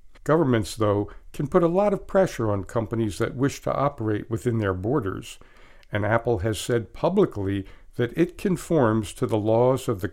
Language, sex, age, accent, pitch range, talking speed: English, male, 60-79, American, 100-130 Hz, 180 wpm